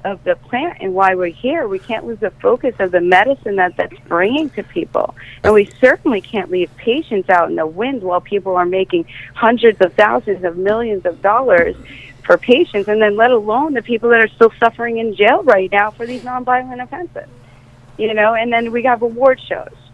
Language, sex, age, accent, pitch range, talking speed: English, female, 30-49, American, 185-235 Hz, 210 wpm